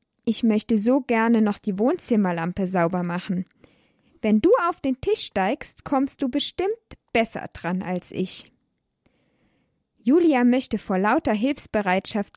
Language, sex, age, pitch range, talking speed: German, female, 20-39, 195-275 Hz, 130 wpm